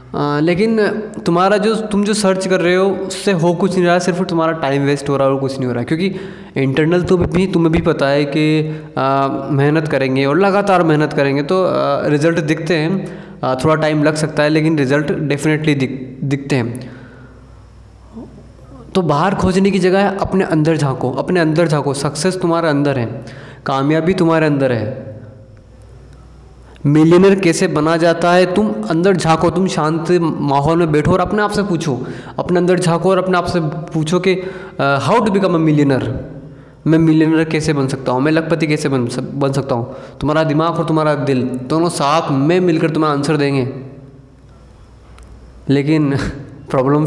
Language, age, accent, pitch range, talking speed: Hindi, 20-39, native, 135-175 Hz, 170 wpm